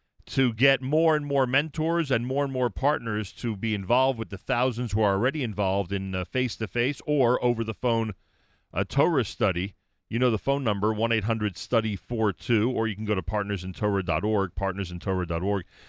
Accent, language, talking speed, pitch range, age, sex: American, English, 155 wpm, 100-135 Hz, 40-59, male